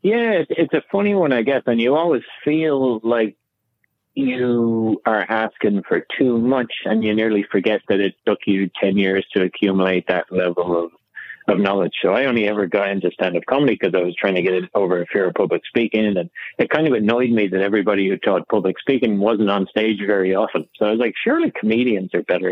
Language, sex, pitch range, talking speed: English, male, 95-115 Hz, 215 wpm